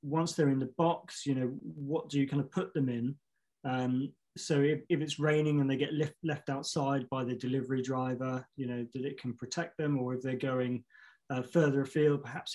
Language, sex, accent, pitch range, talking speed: English, male, British, 130-150 Hz, 215 wpm